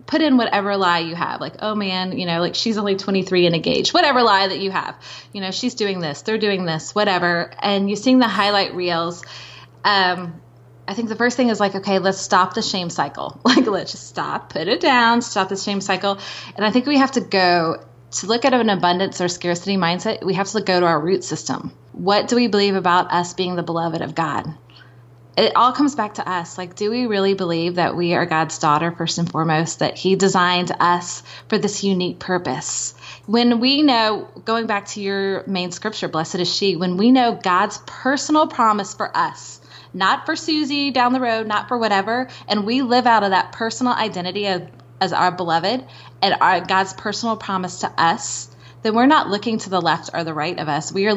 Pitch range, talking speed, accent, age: 175-220 Hz, 215 wpm, American, 20-39